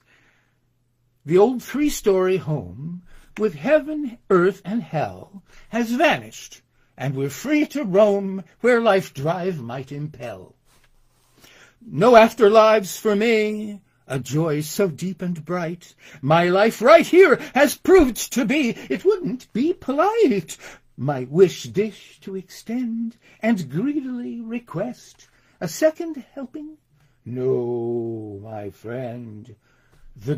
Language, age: English, 60-79